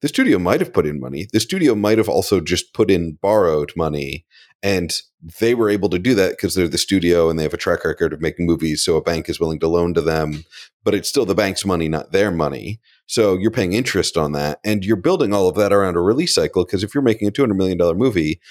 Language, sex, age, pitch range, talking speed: English, male, 40-59, 80-105 Hz, 255 wpm